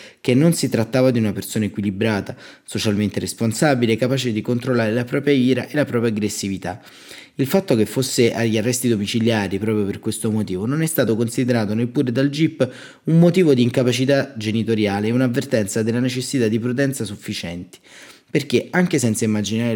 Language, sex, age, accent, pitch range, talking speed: Italian, male, 30-49, native, 105-130 Hz, 165 wpm